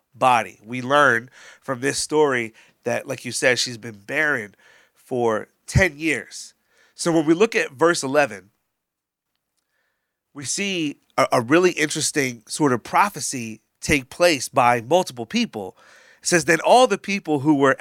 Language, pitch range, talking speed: English, 120-165 Hz, 150 wpm